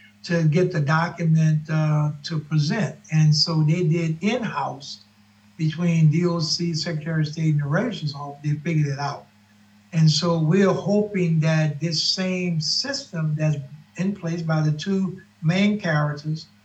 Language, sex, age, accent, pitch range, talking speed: English, male, 60-79, American, 150-170 Hz, 150 wpm